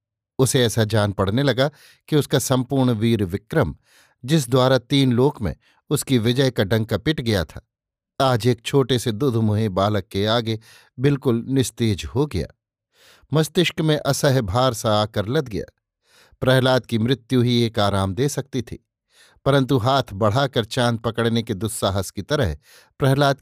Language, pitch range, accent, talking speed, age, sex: Hindi, 110-135 Hz, native, 155 wpm, 50-69, male